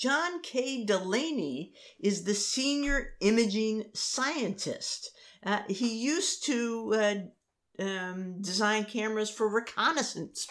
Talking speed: 105 wpm